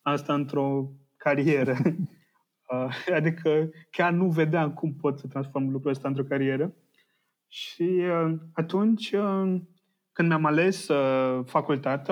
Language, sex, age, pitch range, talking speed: Romanian, male, 20-39, 135-175 Hz, 110 wpm